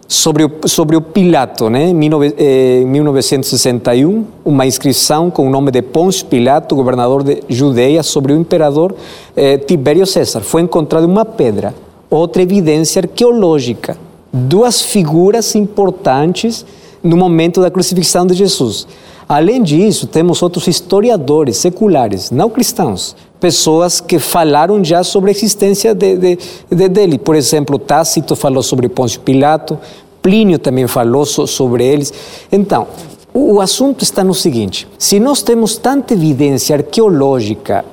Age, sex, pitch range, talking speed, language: 50-69, male, 145-195 Hz, 130 wpm, Portuguese